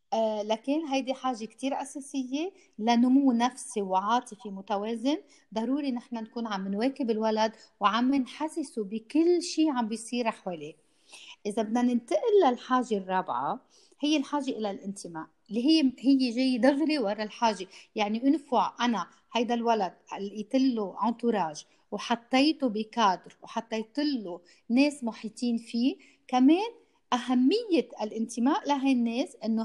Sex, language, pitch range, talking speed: female, Arabic, 210-265 Hz, 120 wpm